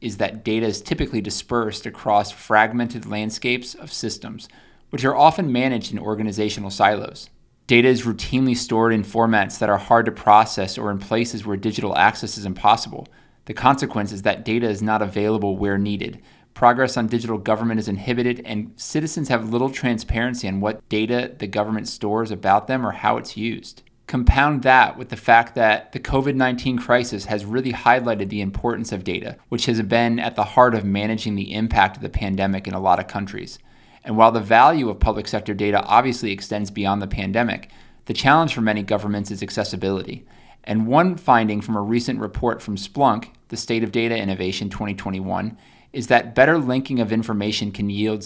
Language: English